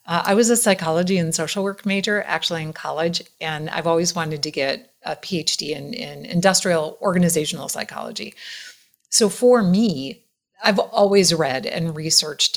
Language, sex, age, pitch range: English, female, 30-49, 155-200 Hz